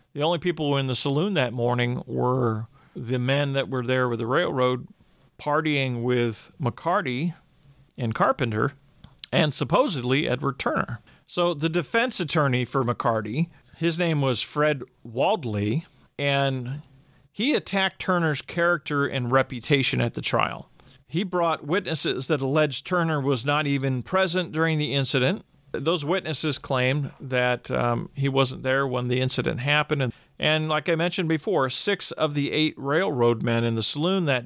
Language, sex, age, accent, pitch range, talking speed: English, male, 40-59, American, 130-155 Hz, 155 wpm